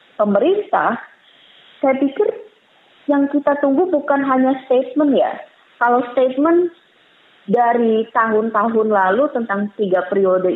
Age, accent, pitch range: 20-39, native, 185-260 Hz